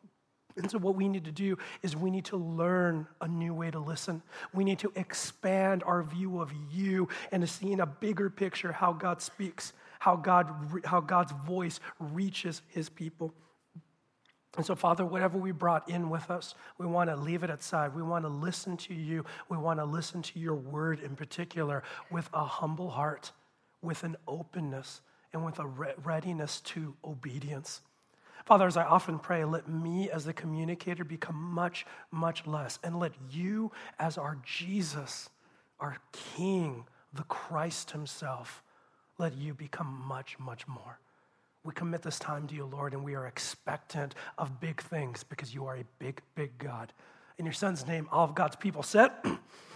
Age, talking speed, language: 40-59, 175 wpm, English